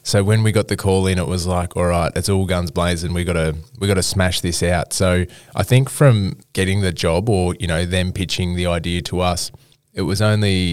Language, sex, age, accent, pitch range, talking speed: English, male, 20-39, Australian, 90-110 Hz, 235 wpm